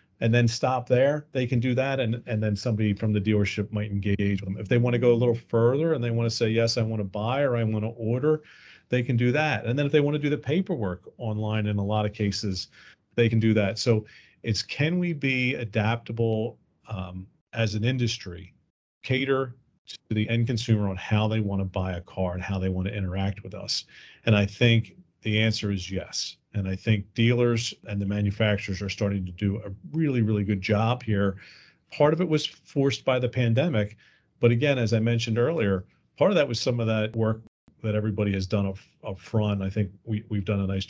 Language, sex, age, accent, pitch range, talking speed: English, male, 40-59, American, 100-120 Hz, 225 wpm